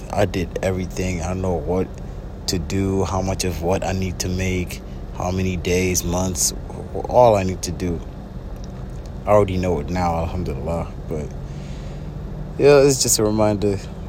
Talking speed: 165 wpm